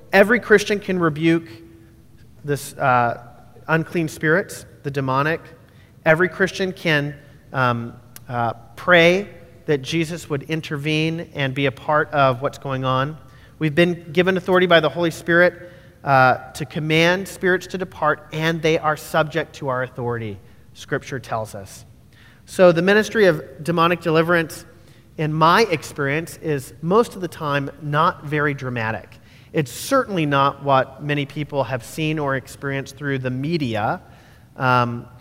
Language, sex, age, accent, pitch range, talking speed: English, male, 40-59, American, 130-165 Hz, 140 wpm